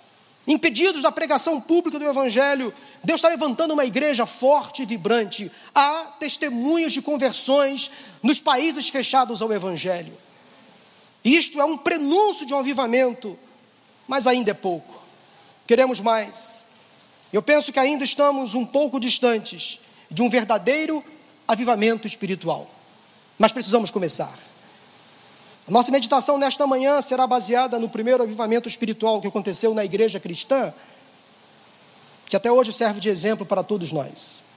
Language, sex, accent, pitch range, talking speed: Portuguese, male, Brazilian, 220-285 Hz, 135 wpm